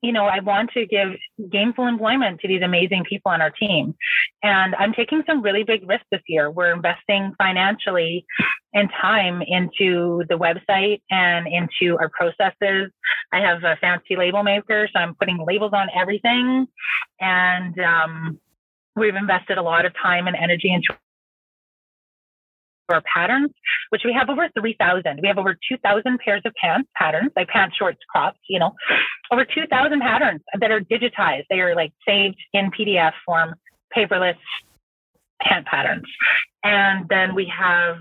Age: 30-49